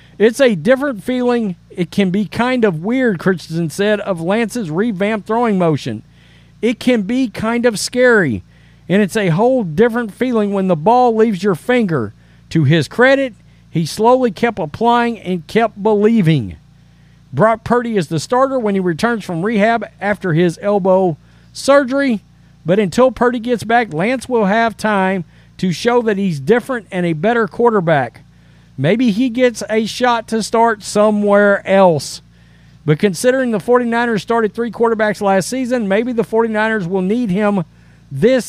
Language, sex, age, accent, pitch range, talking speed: English, male, 50-69, American, 165-235 Hz, 160 wpm